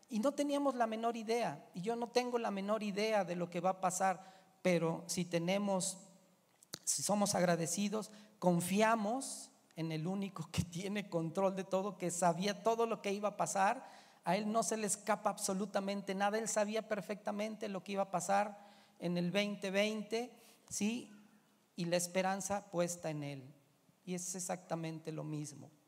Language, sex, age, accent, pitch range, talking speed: Spanish, male, 40-59, Mexican, 165-210 Hz, 170 wpm